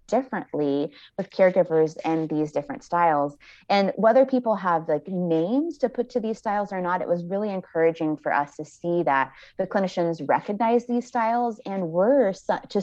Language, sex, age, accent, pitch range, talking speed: English, female, 20-39, American, 155-195 Hz, 175 wpm